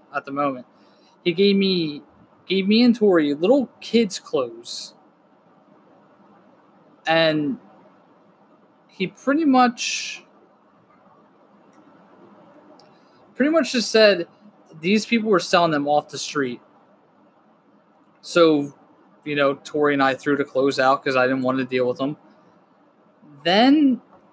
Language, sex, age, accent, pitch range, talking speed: English, male, 20-39, American, 140-185 Hz, 120 wpm